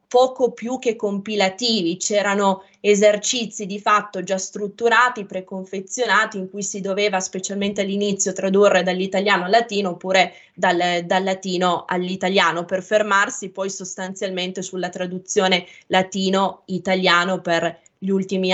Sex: female